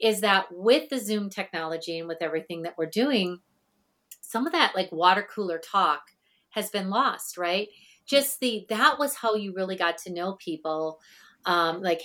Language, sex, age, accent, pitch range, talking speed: English, female, 40-59, American, 180-250 Hz, 180 wpm